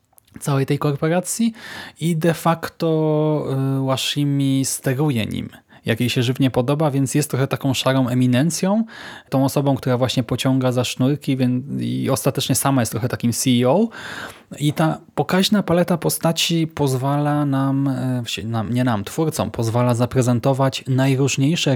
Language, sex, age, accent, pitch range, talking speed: Polish, male, 20-39, native, 120-150 Hz, 130 wpm